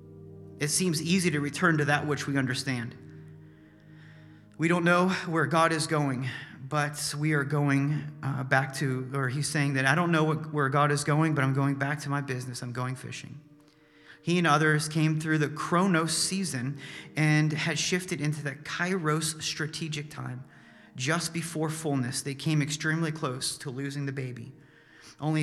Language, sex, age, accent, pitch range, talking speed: English, male, 30-49, American, 140-165 Hz, 175 wpm